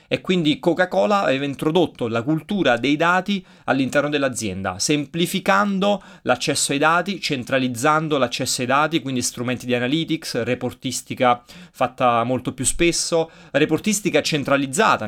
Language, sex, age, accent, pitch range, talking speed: Italian, male, 30-49, native, 125-170 Hz, 120 wpm